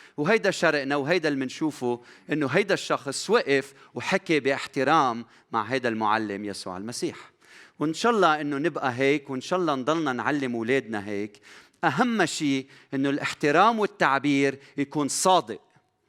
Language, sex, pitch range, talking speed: Arabic, male, 125-175 Hz, 135 wpm